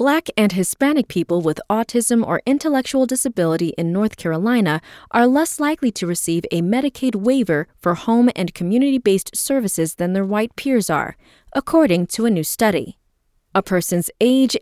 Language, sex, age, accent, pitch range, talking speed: English, female, 20-39, American, 175-260 Hz, 155 wpm